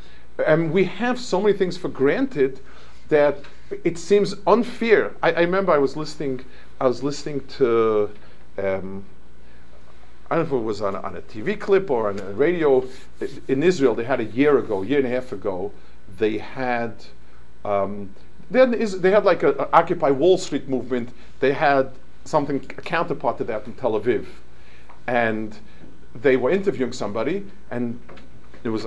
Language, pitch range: English, 120-190 Hz